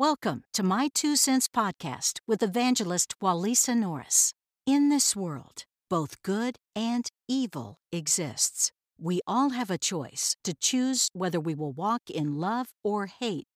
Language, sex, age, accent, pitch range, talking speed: English, female, 60-79, American, 160-240 Hz, 145 wpm